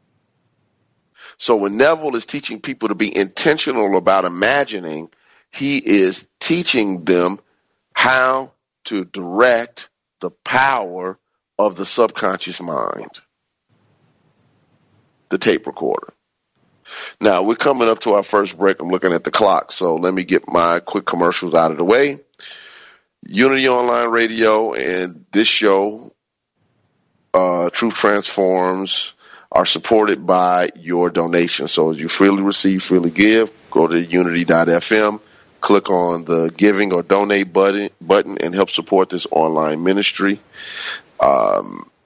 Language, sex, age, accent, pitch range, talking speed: English, male, 40-59, American, 90-105 Hz, 130 wpm